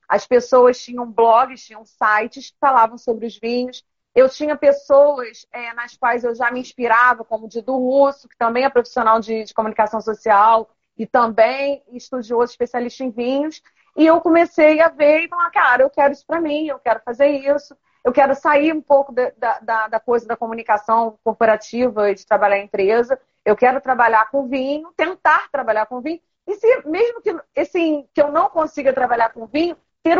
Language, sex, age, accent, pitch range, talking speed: Portuguese, female, 40-59, Brazilian, 230-285 Hz, 190 wpm